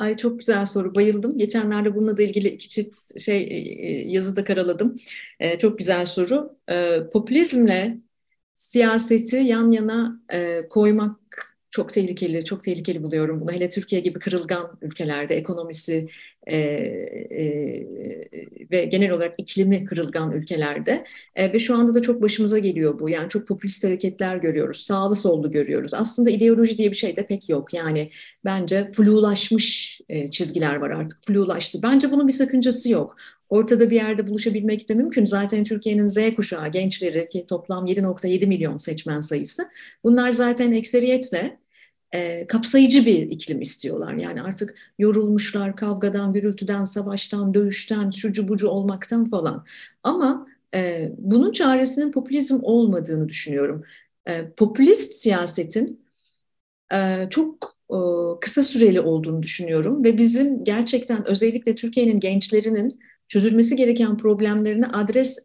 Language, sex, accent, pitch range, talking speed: Turkish, female, native, 180-230 Hz, 135 wpm